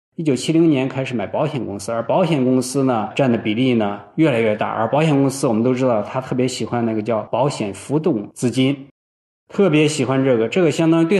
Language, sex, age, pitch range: Chinese, male, 20-39, 115-160 Hz